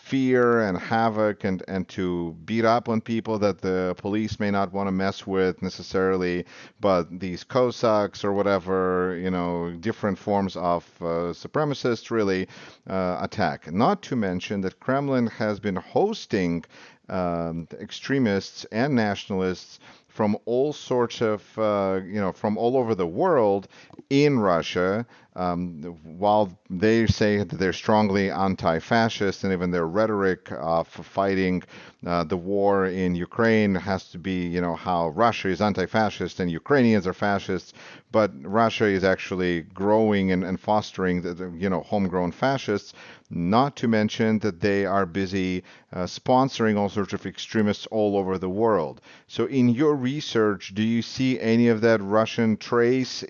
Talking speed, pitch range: 150 wpm, 90-110 Hz